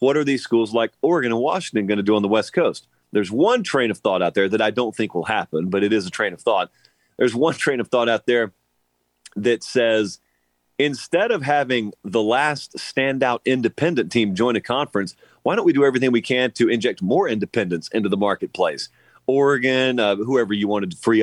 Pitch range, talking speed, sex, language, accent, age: 105-130 Hz, 215 wpm, male, English, American, 40-59